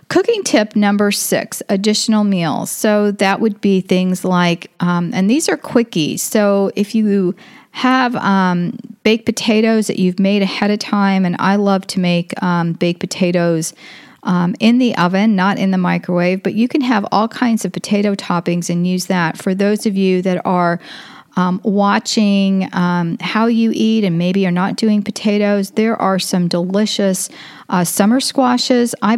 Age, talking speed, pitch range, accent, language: 40-59, 175 wpm, 180-220 Hz, American, English